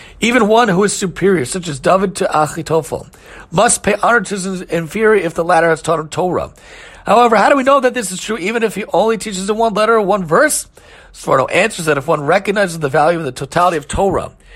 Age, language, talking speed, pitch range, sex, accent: 40-59, English, 230 wpm, 145-200 Hz, male, American